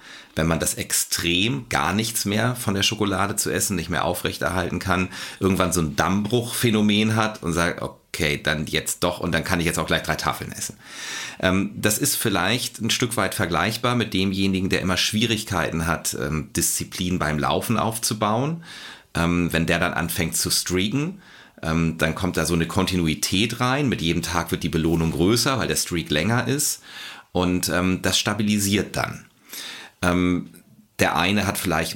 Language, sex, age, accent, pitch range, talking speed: German, male, 40-59, German, 80-105 Hz, 165 wpm